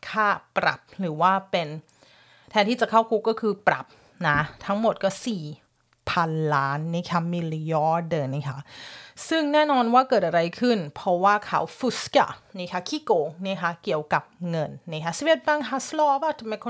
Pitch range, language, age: 170-235 Hz, Thai, 30-49